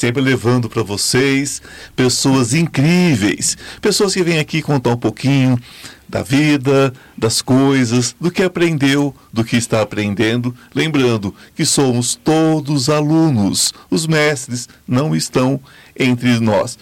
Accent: Brazilian